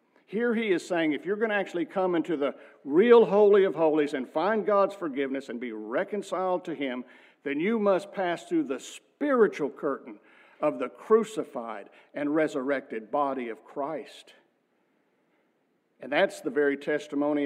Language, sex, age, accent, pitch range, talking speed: English, male, 60-79, American, 140-195 Hz, 160 wpm